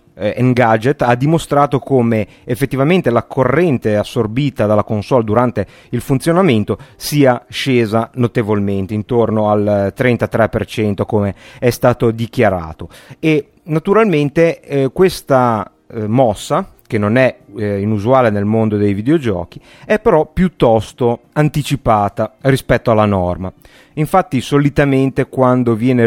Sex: male